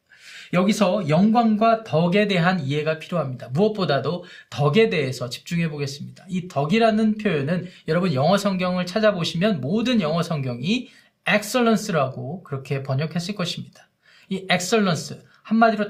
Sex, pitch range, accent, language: male, 170-220 Hz, native, Korean